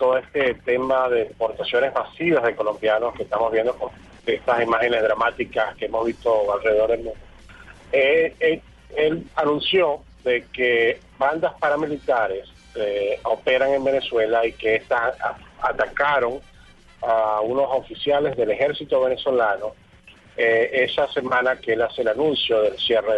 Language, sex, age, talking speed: Spanish, male, 40-59, 130 wpm